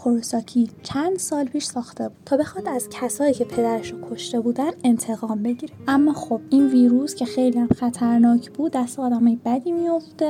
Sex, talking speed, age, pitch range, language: female, 170 wpm, 10-29, 235-285 Hz, Persian